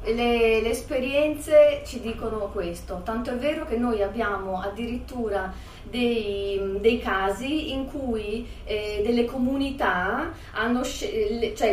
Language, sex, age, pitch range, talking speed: Italian, female, 30-49, 215-280 Hz, 120 wpm